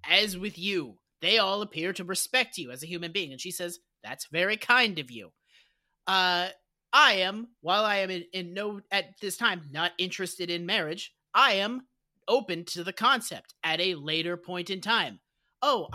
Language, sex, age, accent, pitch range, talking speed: English, male, 30-49, American, 175-240 Hz, 190 wpm